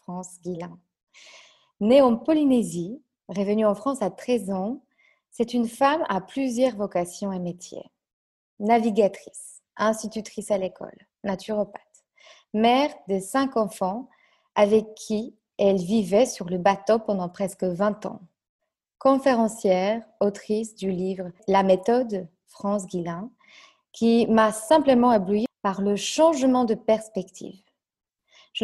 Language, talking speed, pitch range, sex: French, 120 wpm, 195-260 Hz, female